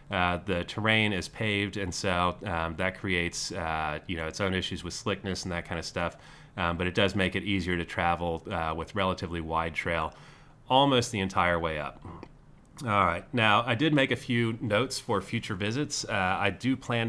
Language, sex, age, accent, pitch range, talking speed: English, male, 30-49, American, 85-110 Hz, 205 wpm